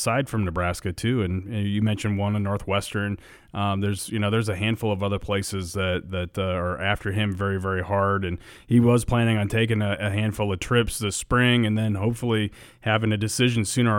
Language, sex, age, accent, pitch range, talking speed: English, male, 30-49, American, 100-115 Hz, 215 wpm